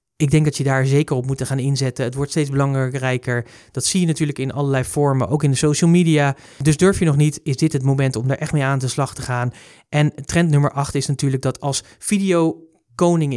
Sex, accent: male, Dutch